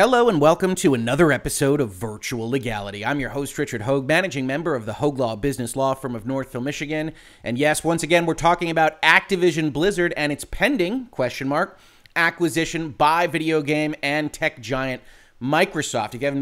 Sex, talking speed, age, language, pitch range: male, 185 wpm, 30-49, English, 145-190 Hz